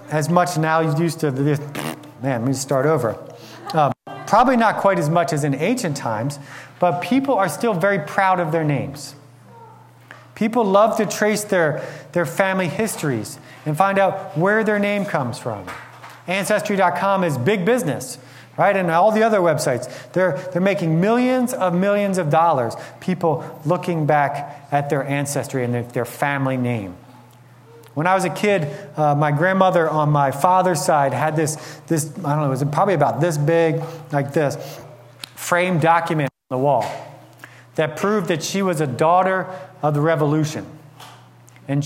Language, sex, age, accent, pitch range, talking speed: English, male, 30-49, American, 140-190 Hz, 170 wpm